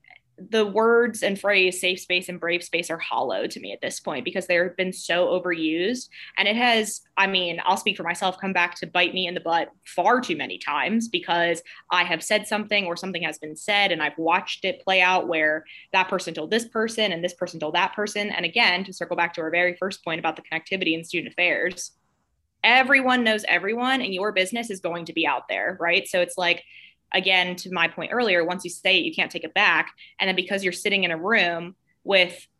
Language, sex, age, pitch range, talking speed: English, female, 20-39, 170-205 Hz, 230 wpm